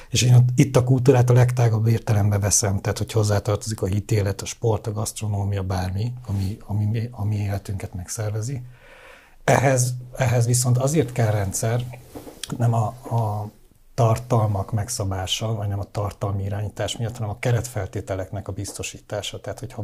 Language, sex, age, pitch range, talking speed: Hungarian, male, 60-79, 100-120 Hz, 150 wpm